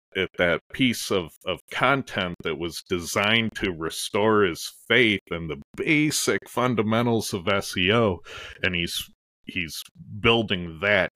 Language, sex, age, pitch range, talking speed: English, male, 30-49, 90-125 Hz, 130 wpm